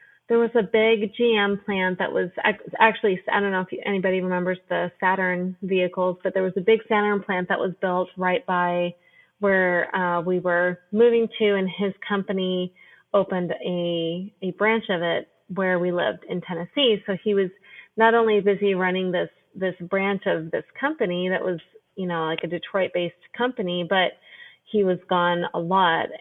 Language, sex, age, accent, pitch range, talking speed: English, female, 30-49, American, 180-205 Hz, 180 wpm